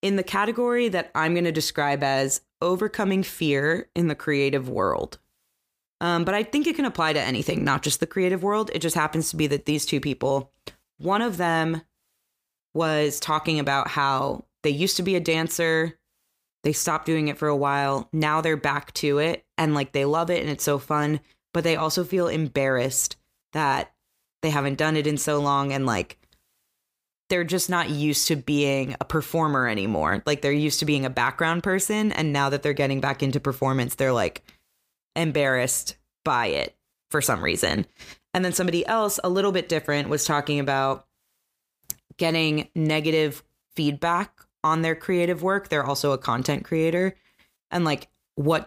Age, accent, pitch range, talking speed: 20-39, American, 140-170 Hz, 180 wpm